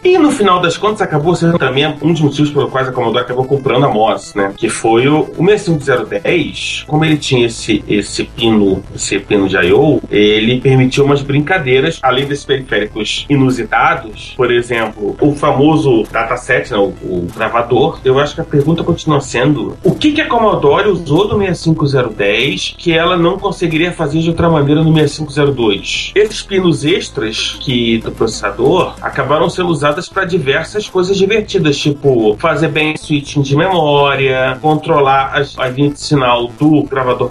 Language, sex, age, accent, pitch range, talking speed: Portuguese, male, 30-49, Brazilian, 130-170 Hz, 165 wpm